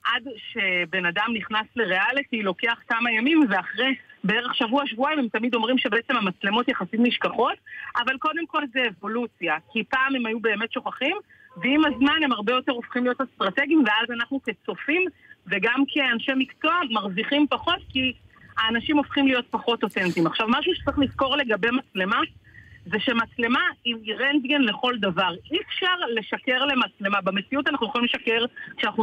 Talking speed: 150 wpm